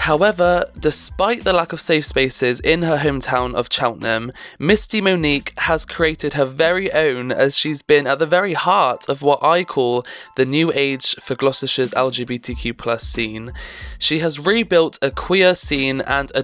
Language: English